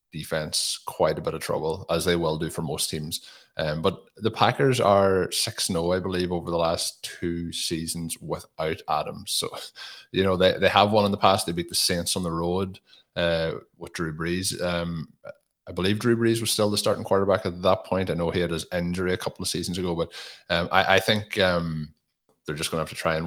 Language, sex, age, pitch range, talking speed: English, male, 20-39, 85-95 Hz, 225 wpm